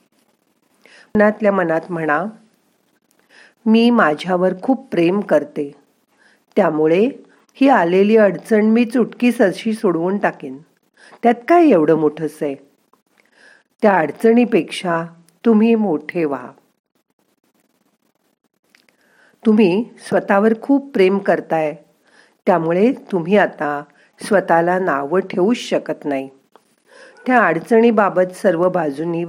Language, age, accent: Marathi, 50-69, native